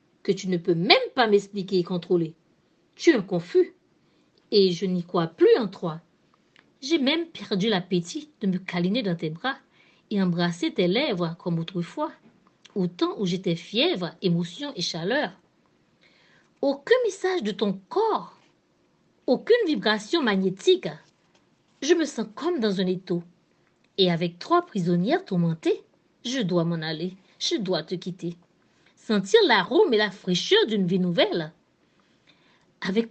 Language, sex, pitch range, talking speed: French, female, 175-230 Hz, 145 wpm